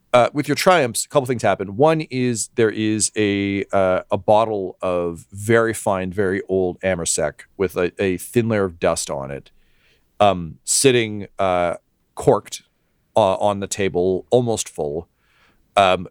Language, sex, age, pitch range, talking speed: English, male, 40-59, 85-115 Hz, 155 wpm